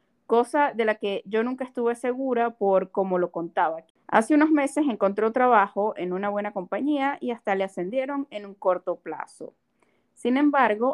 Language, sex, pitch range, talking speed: Spanish, female, 195-255 Hz, 170 wpm